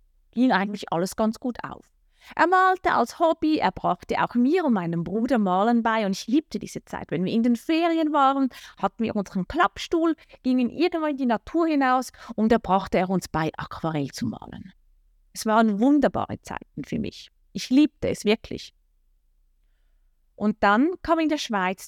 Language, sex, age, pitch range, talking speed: German, female, 30-49, 180-255 Hz, 180 wpm